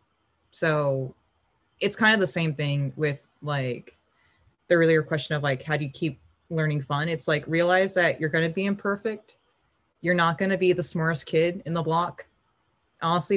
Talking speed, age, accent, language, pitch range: 185 wpm, 20-39, American, English, 140-180 Hz